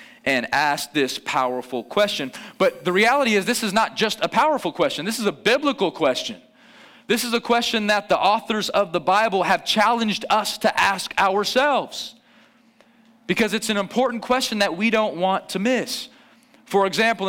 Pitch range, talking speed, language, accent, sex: 205-255 Hz, 175 wpm, English, American, male